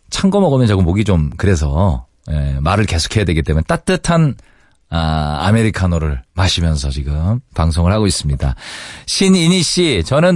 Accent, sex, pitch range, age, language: native, male, 95-150 Hz, 40-59, Korean